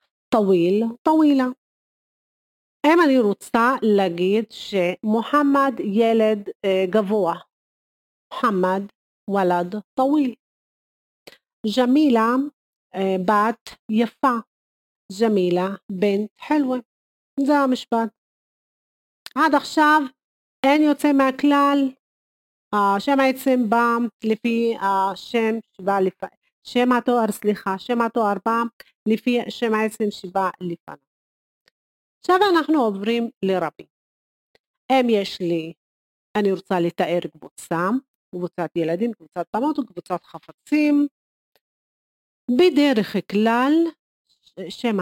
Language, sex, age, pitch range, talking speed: Hebrew, female, 40-59, 185-255 Hz, 85 wpm